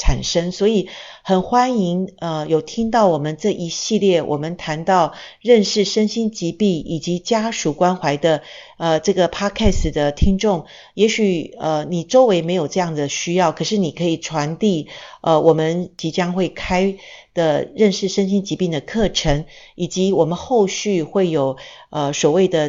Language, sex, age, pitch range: Chinese, female, 50-69, 160-210 Hz